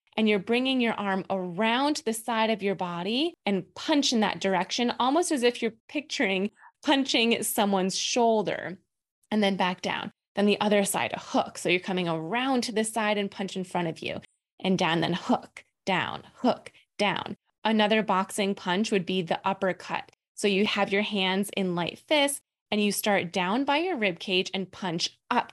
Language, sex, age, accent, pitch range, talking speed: English, female, 20-39, American, 190-235 Hz, 190 wpm